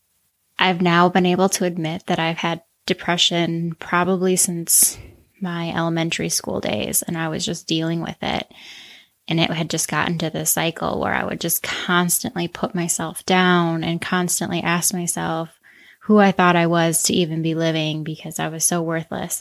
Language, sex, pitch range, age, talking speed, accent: English, female, 165-185 Hz, 20-39, 175 wpm, American